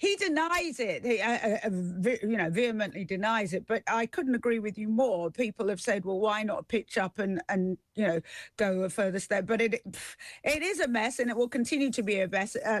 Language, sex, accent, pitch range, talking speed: English, female, British, 185-245 Hz, 220 wpm